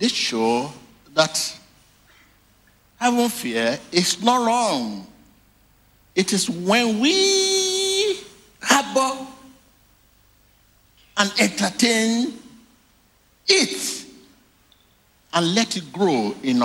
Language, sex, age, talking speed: English, male, 60-79, 75 wpm